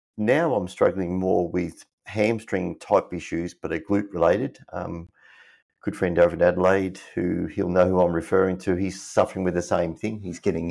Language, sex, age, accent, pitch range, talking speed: English, male, 30-49, Australian, 85-105 Hz, 185 wpm